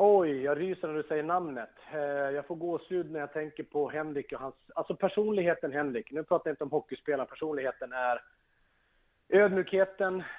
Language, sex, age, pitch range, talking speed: English, male, 30-49, 125-155 Hz, 175 wpm